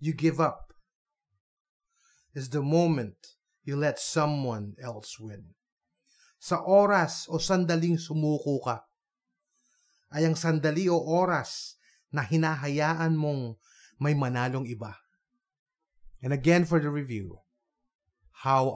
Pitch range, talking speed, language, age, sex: 125-165 Hz, 110 wpm, Filipino, 30-49, male